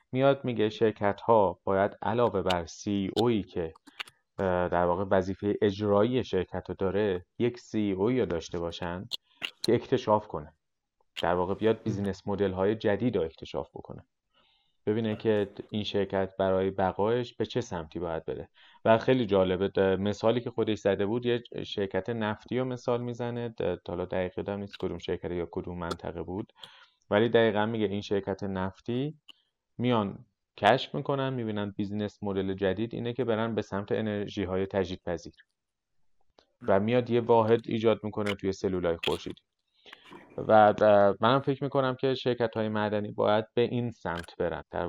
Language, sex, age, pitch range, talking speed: Persian, male, 30-49, 95-115 Hz, 155 wpm